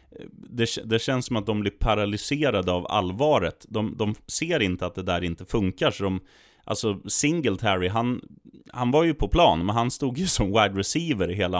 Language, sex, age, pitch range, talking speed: Swedish, male, 30-49, 95-125 Hz, 195 wpm